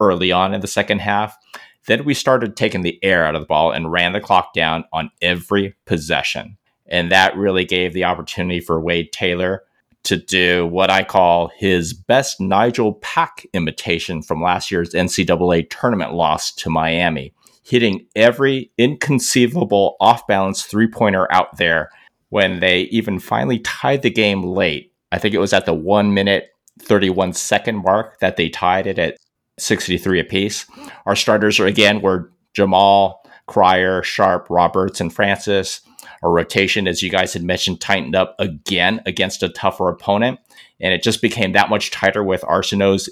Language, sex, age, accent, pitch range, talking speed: English, male, 30-49, American, 90-100 Hz, 165 wpm